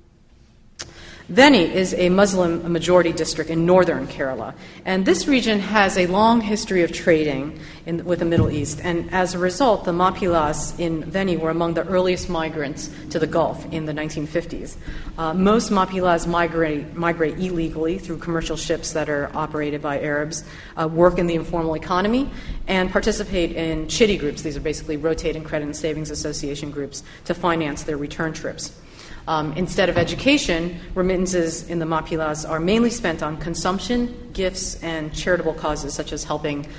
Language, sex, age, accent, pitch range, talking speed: English, female, 30-49, American, 150-180 Hz, 165 wpm